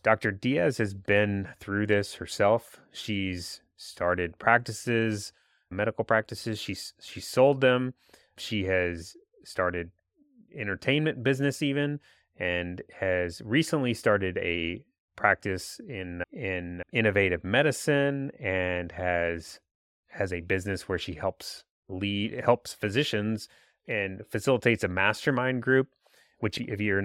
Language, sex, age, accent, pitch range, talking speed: English, male, 30-49, American, 95-115 Hz, 115 wpm